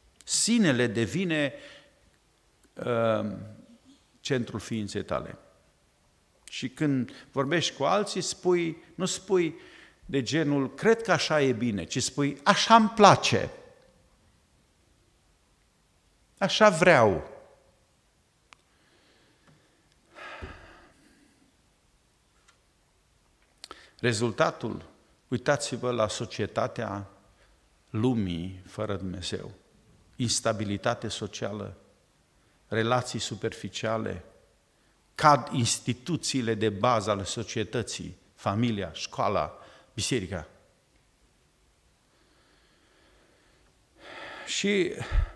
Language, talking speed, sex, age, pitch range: Romanian, 60 wpm, male, 50-69, 100-145 Hz